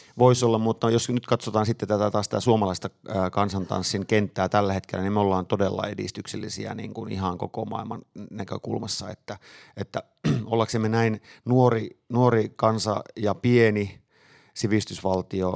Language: Finnish